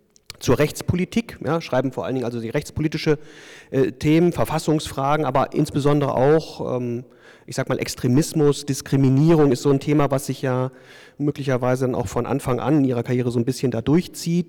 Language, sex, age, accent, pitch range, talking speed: German, male, 40-59, German, 120-150 Hz, 170 wpm